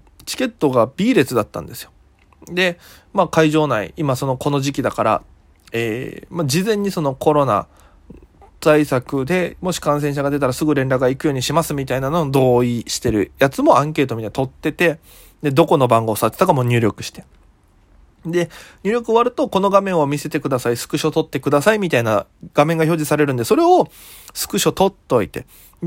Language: Japanese